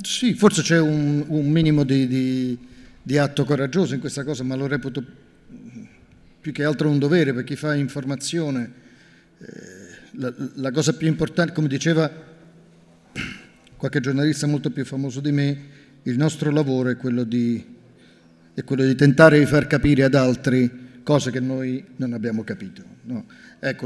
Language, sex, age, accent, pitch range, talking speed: Italian, male, 50-69, native, 125-150 Hz, 150 wpm